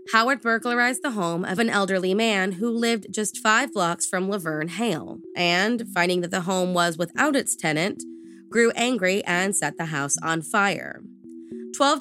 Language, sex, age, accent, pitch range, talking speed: English, female, 20-39, American, 170-235 Hz, 170 wpm